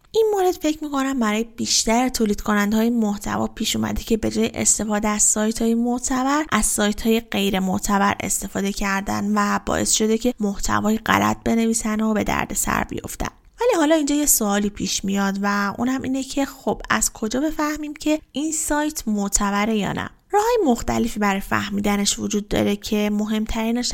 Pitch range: 200-245 Hz